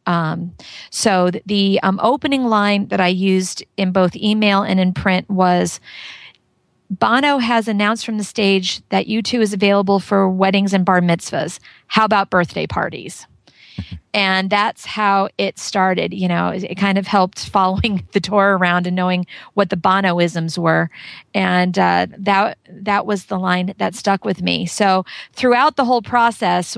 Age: 40-59